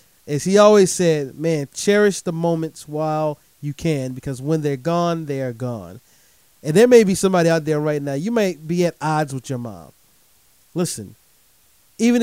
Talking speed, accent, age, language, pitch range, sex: 180 wpm, American, 30-49, English, 130-180 Hz, male